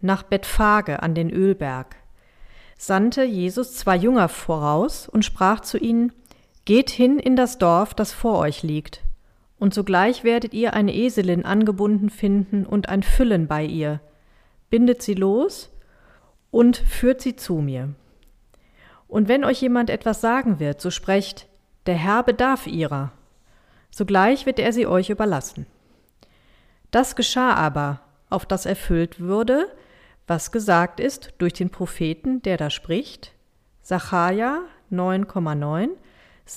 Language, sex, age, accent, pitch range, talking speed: German, female, 40-59, German, 170-235 Hz, 135 wpm